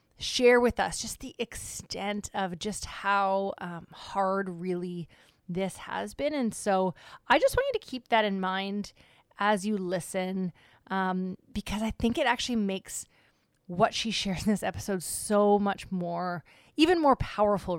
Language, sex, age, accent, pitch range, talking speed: English, female, 20-39, American, 190-235 Hz, 160 wpm